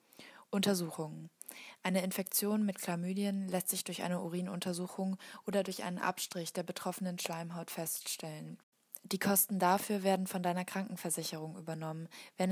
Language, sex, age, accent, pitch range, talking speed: German, female, 20-39, German, 175-195 Hz, 130 wpm